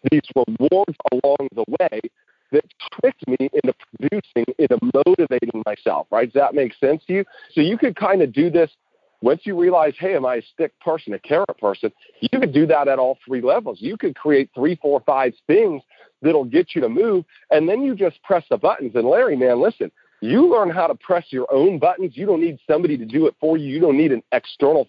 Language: English